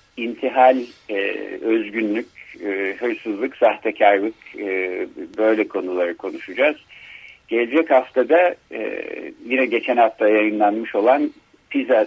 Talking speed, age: 95 wpm, 60-79